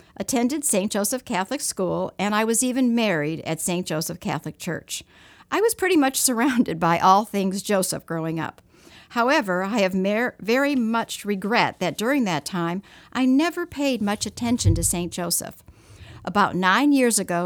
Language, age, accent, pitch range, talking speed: English, 60-79, American, 180-250 Hz, 165 wpm